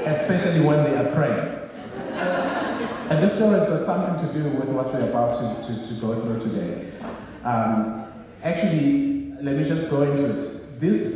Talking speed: 185 wpm